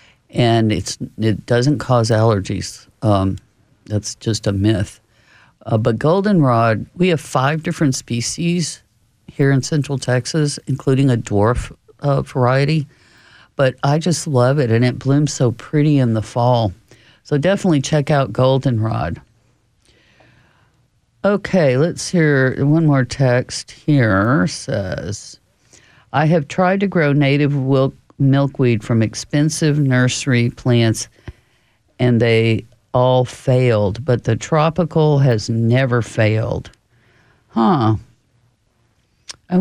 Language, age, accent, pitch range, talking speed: English, 50-69, American, 115-150 Hz, 120 wpm